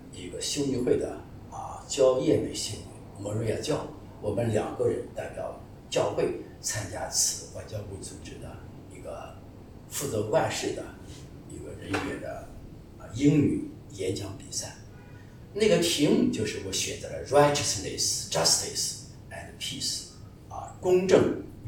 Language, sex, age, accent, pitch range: English, male, 50-69, Chinese, 105-145 Hz